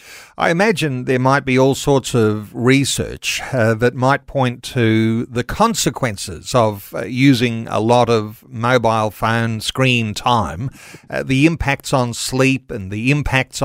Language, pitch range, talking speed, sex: English, 120-155 Hz, 150 wpm, male